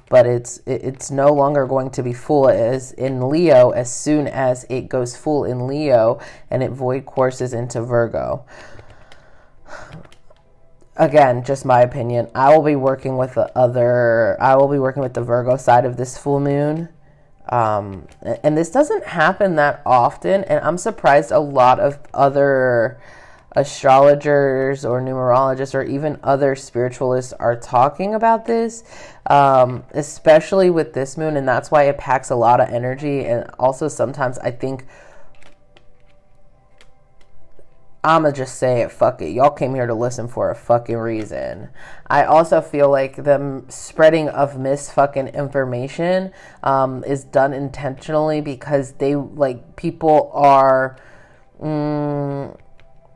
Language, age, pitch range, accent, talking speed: English, 20-39, 125-145 Hz, American, 145 wpm